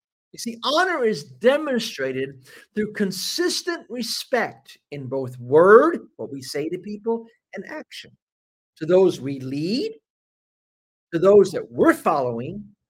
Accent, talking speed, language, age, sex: American, 125 wpm, English, 50-69, male